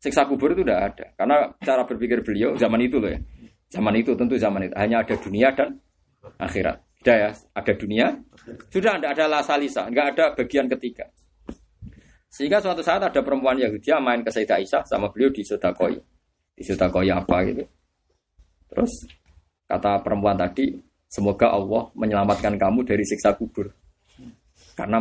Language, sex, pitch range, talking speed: Indonesian, male, 95-135 Hz, 160 wpm